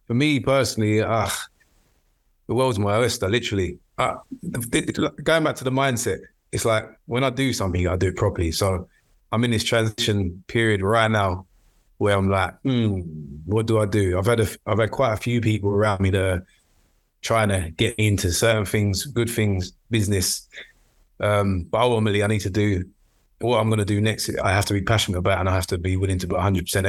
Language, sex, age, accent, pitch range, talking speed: English, male, 20-39, British, 95-115 Hz, 205 wpm